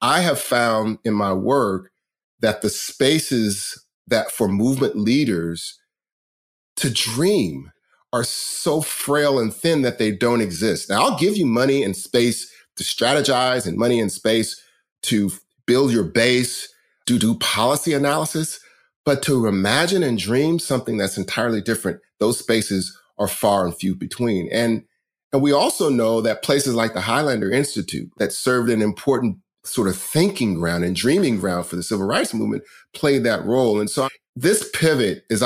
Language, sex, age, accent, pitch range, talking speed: English, male, 40-59, American, 100-130 Hz, 160 wpm